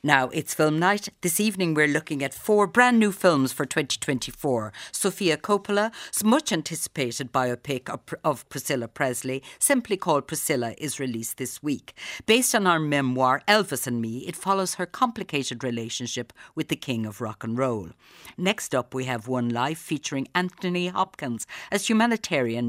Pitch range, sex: 125-180 Hz, female